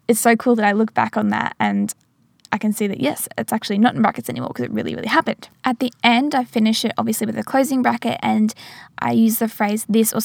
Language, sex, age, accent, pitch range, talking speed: English, female, 10-29, Australian, 210-235 Hz, 260 wpm